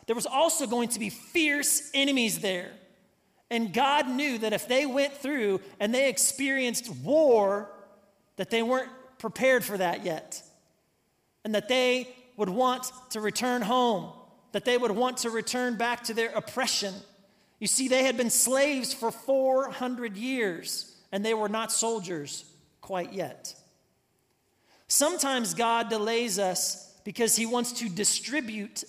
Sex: male